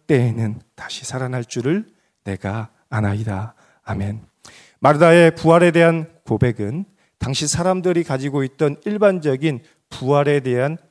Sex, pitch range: male, 130-180 Hz